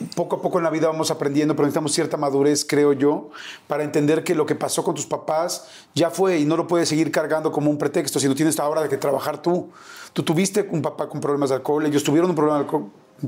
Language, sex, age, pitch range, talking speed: Spanish, male, 40-59, 150-175 Hz, 260 wpm